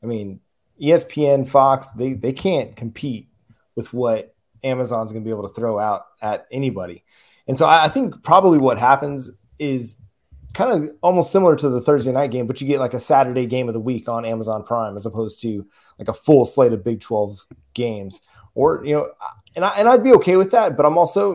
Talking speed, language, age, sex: 215 wpm, English, 30-49, male